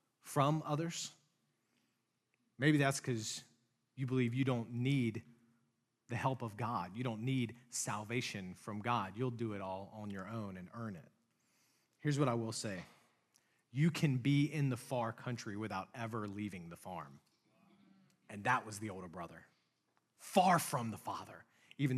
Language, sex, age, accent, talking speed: English, male, 40-59, American, 160 wpm